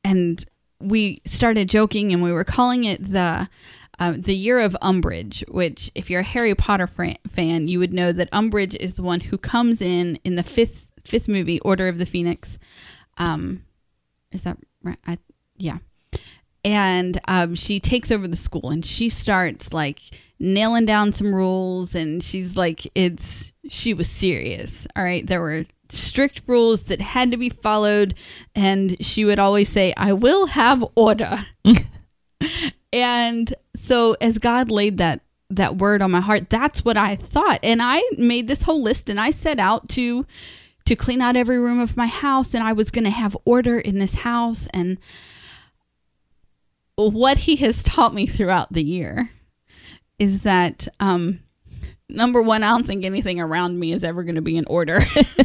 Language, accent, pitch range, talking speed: English, American, 175-230 Hz, 175 wpm